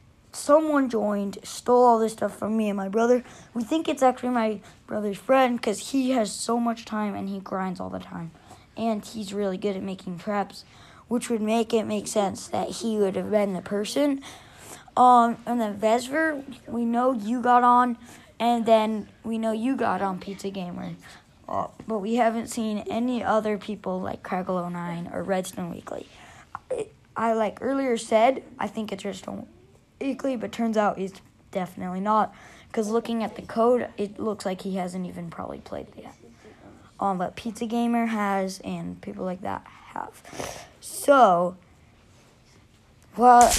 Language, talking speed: English, 170 wpm